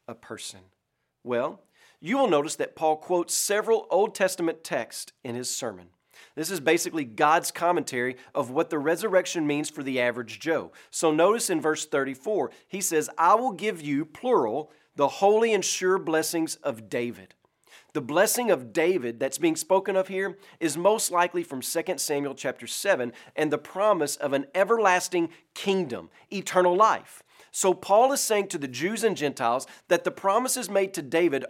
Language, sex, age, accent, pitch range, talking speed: English, male, 40-59, American, 140-190 Hz, 170 wpm